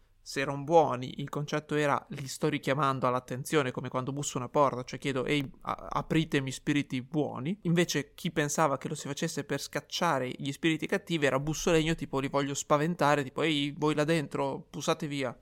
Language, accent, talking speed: Italian, native, 185 wpm